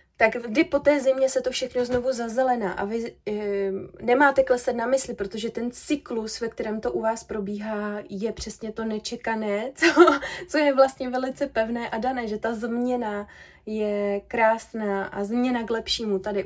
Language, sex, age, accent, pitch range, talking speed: Czech, female, 30-49, native, 200-255 Hz, 170 wpm